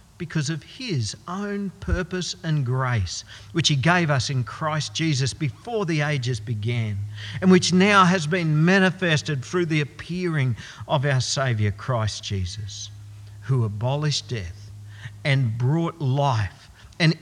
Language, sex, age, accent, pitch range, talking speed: English, male, 50-69, Australian, 100-155 Hz, 135 wpm